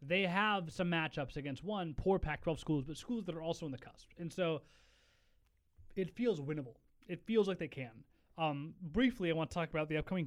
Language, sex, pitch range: English, male, 140-175 Hz